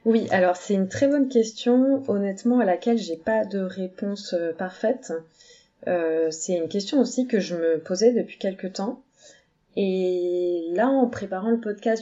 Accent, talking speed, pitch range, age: French, 170 wpm, 175-225 Hz, 30-49